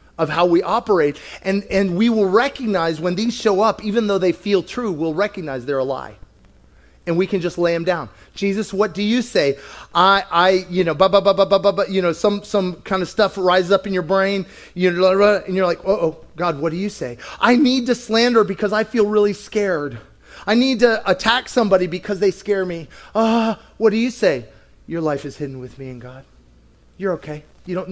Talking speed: 220 wpm